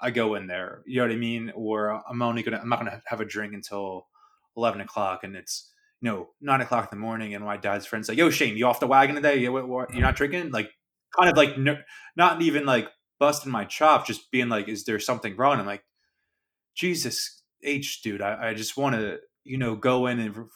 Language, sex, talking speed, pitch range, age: English, male, 235 wpm, 110-130 Hz, 20-39